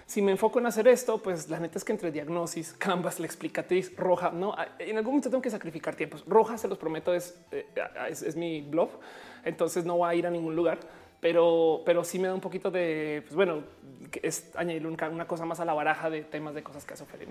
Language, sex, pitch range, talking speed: Spanish, male, 165-215 Hz, 235 wpm